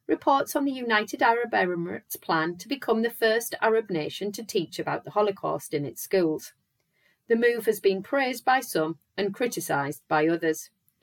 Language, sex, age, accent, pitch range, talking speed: English, female, 30-49, British, 155-225 Hz, 175 wpm